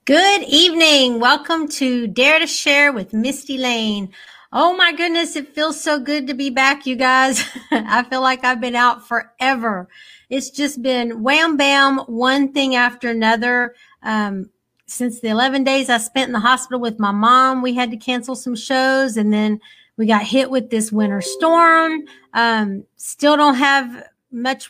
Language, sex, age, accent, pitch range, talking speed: English, female, 50-69, American, 230-275 Hz, 170 wpm